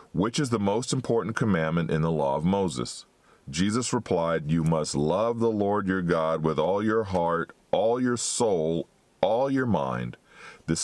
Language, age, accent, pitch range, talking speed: English, 40-59, American, 80-105 Hz, 170 wpm